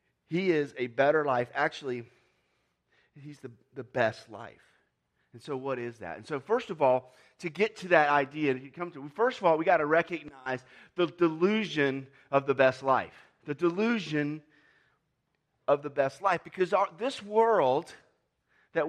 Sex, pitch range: male, 145-195 Hz